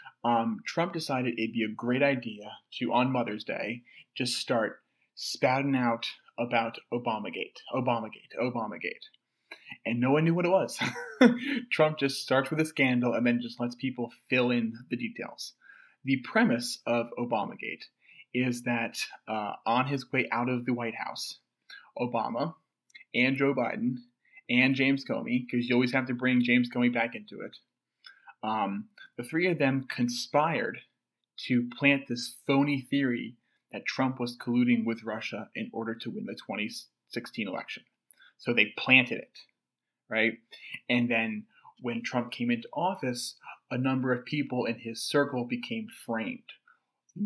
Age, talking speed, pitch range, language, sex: 30-49, 155 wpm, 120-140 Hz, English, male